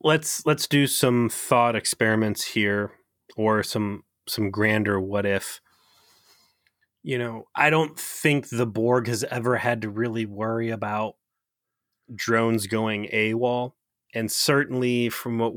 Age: 30-49